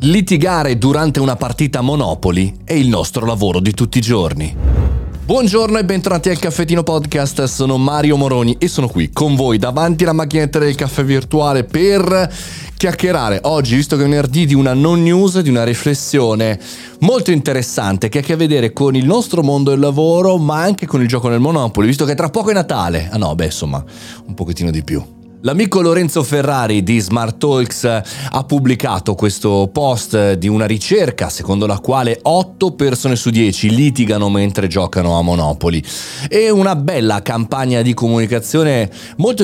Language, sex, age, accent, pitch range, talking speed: Italian, male, 30-49, native, 100-145 Hz, 170 wpm